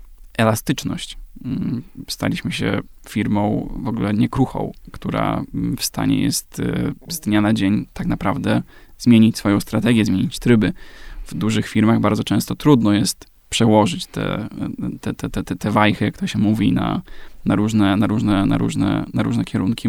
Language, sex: Polish, male